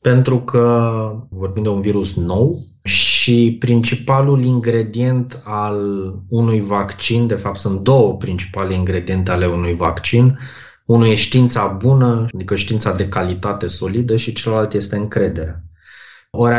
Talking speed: 130 wpm